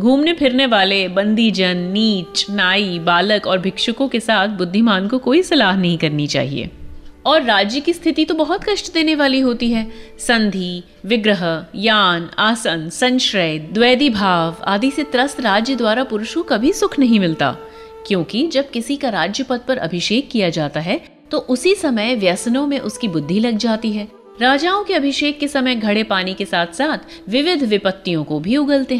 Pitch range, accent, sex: 185-270 Hz, native, female